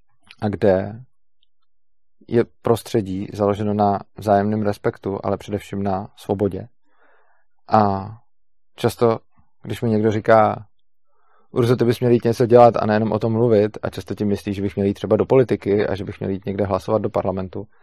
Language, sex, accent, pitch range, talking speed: Czech, male, native, 100-115 Hz, 165 wpm